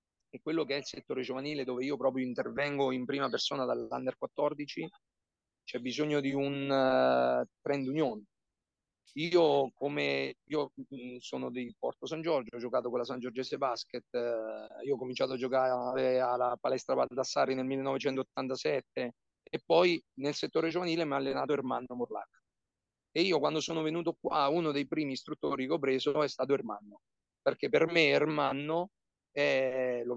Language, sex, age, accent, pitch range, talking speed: Italian, male, 40-59, native, 125-150 Hz, 150 wpm